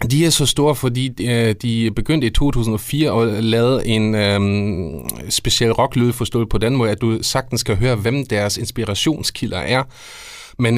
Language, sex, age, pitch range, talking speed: Danish, male, 30-49, 105-120 Hz, 160 wpm